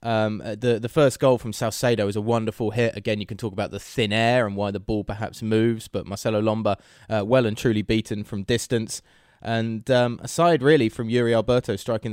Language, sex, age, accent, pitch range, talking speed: English, male, 20-39, British, 110-140 Hz, 215 wpm